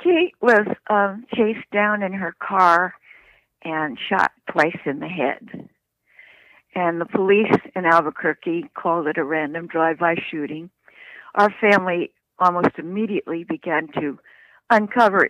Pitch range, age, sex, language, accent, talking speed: 155-200 Hz, 60-79, female, English, American, 125 wpm